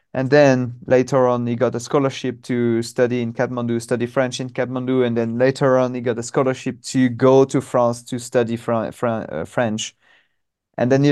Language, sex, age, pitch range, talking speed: English, male, 30-49, 115-130 Hz, 200 wpm